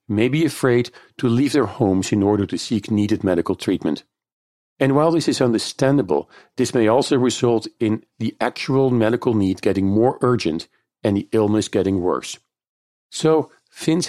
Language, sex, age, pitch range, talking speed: English, male, 50-69, 105-125 Hz, 160 wpm